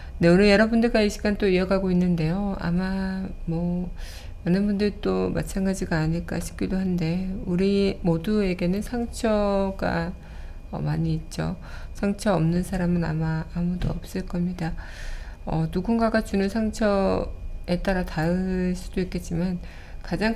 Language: Korean